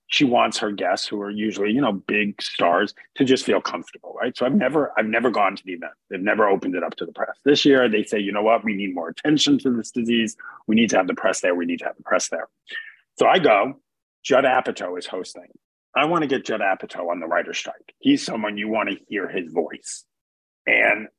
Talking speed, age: 245 wpm, 40-59